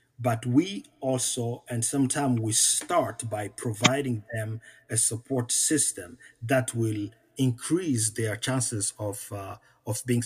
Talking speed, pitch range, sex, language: 130 wpm, 115-140 Hz, male, English